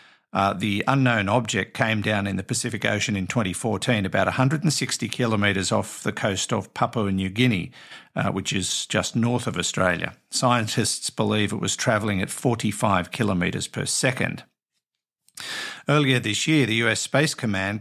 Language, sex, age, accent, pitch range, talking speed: English, male, 50-69, Australian, 95-120 Hz, 155 wpm